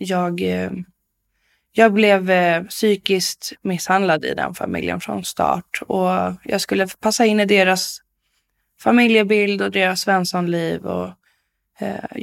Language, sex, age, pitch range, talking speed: Swedish, female, 20-39, 160-195 Hz, 115 wpm